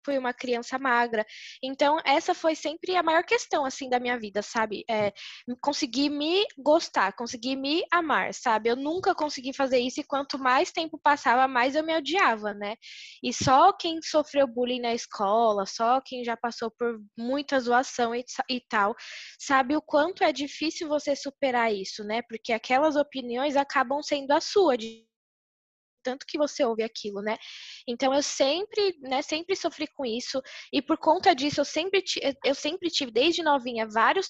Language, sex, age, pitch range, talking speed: Portuguese, female, 10-29, 235-300 Hz, 175 wpm